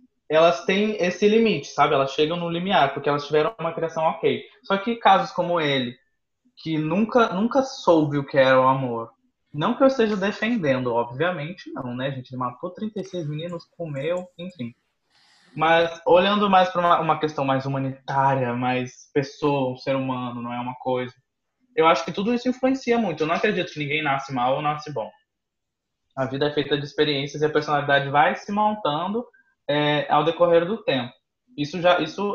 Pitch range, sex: 135-185 Hz, male